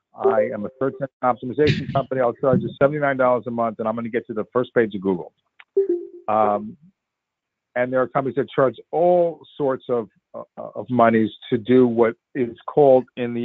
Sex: male